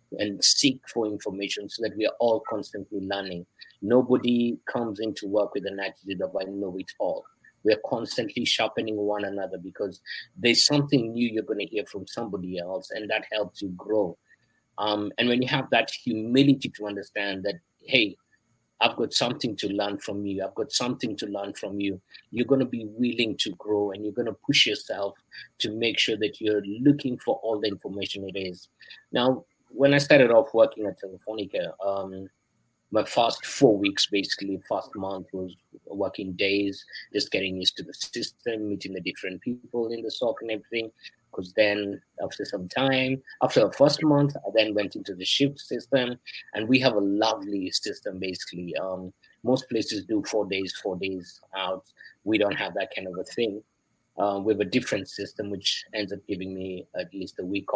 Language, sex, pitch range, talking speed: English, male, 100-120 Hz, 190 wpm